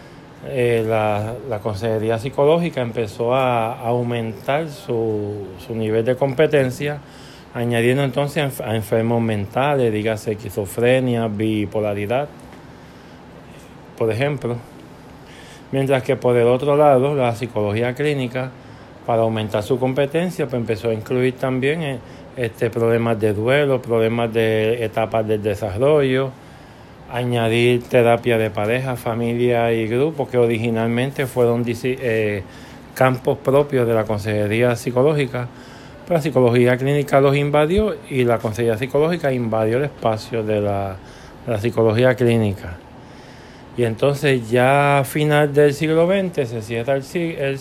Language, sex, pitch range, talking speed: Spanish, male, 115-140 Hz, 125 wpm